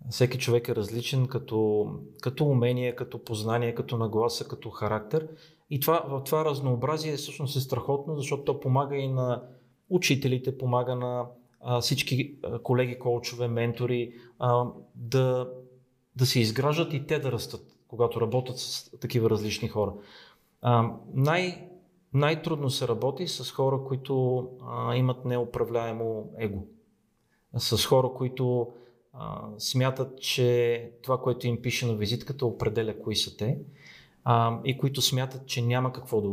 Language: Bulgarian